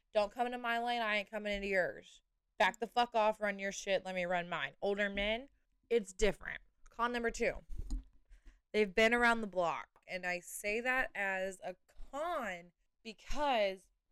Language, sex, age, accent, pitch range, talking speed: English, female, 20-39, American, 180-230 Hz, 175 wpm